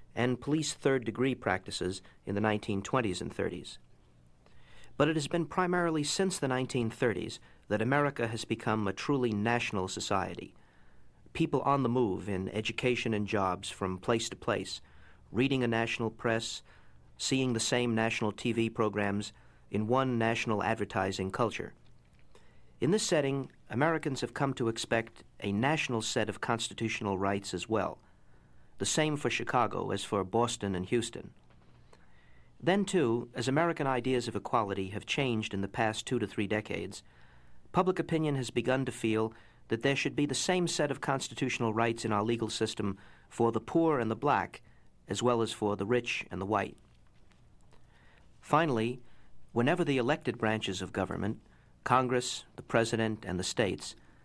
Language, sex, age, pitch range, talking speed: English, male, 50-69, 100-130 Hz, 155 wpm